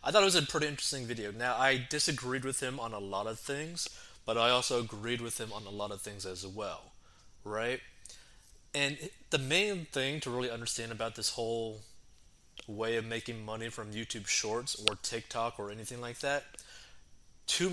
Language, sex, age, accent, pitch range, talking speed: English, male, 20-39, American, 110-130 Hz, 190 wpm